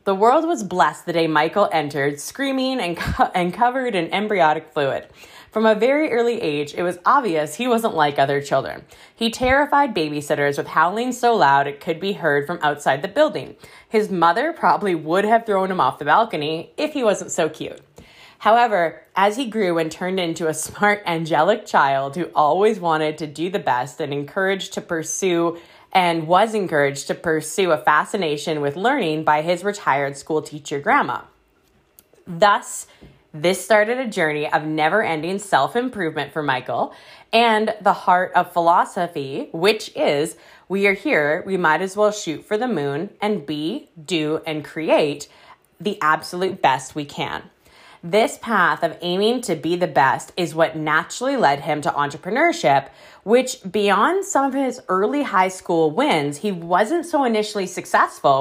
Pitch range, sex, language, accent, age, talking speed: 155-215 Hz, female, English, American, 10-29, 165 wpm